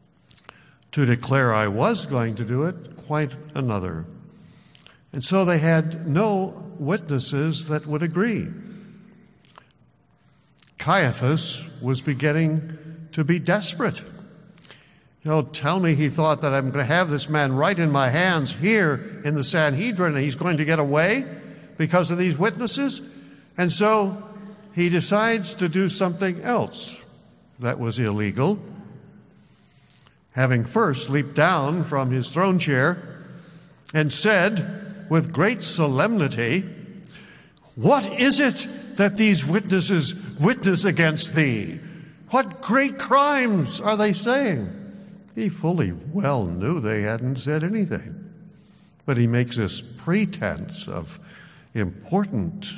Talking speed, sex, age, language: 125 wpm, male, 60-79, English